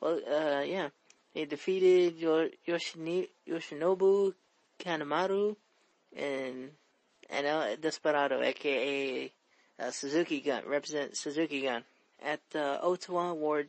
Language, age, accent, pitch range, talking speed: English, 30-49, American, 150-180 Hz, 105 wpm